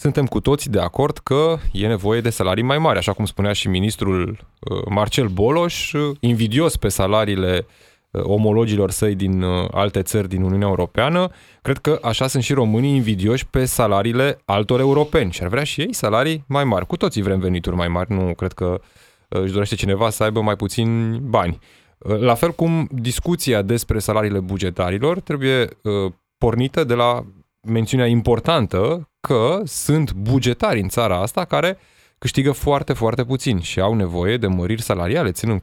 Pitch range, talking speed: 95-135 Hz, 165 wpm